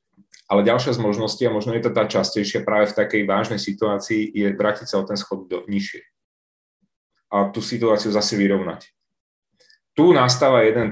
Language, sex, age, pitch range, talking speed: Czech, male, 30-49, 100-120 Hz, 170 wpm